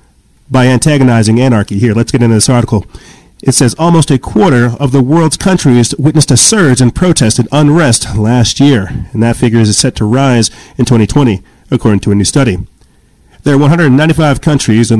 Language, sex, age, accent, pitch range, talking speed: English, male, 40-59, American, 110-135 Hz, 205 wpm